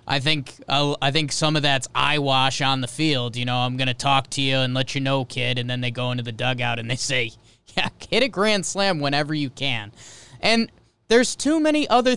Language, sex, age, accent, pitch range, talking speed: English, male, 20-39, American, 135-200 Hz, 235 wpm